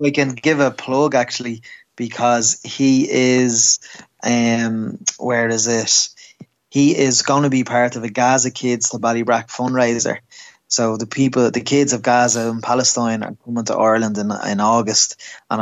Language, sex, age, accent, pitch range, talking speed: English, male, 20-39, Irish, 110-125 Hz, 165 wpm